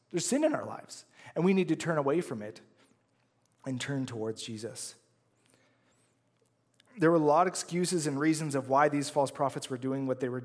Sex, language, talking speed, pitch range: male, English, 200 wpm, 125-160 Hz